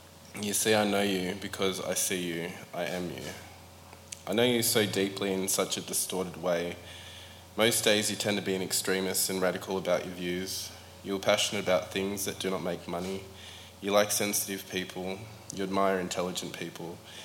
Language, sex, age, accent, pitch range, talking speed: English, male, 20-39, Australian, 90-105 Hz, 185 wpm